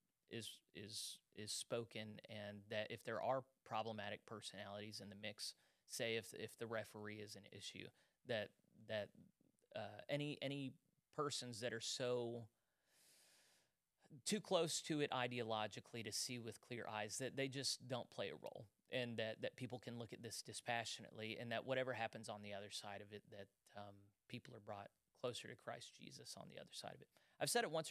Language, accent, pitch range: English, American, 110-125 Hz